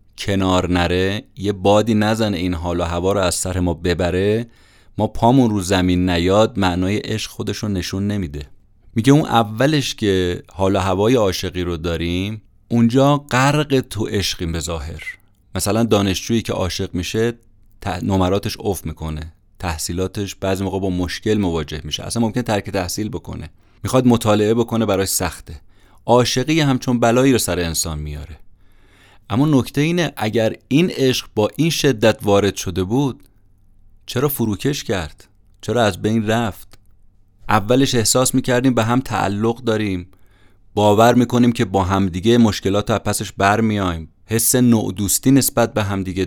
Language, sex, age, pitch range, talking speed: Persian, male, 30-49, 95-115 Hz, 145 wpm